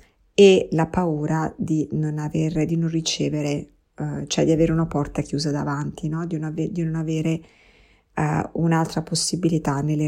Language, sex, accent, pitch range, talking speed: Italian, female, native, 155-180 Hz, 160 wpm